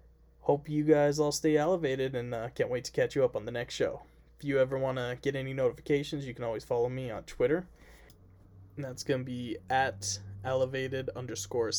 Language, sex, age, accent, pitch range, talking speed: English, male, 20-39, American, 120-160 Hz, 210 wpm